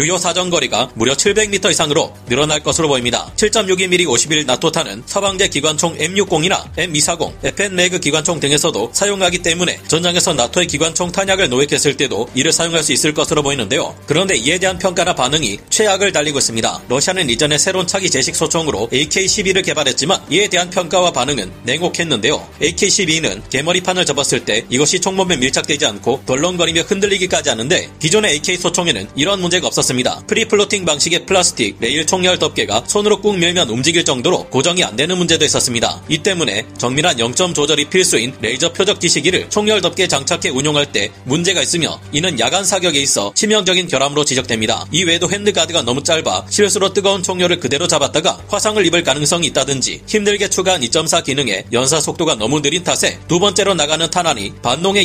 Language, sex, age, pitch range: Korean, male, 30-49, 145-190 Hz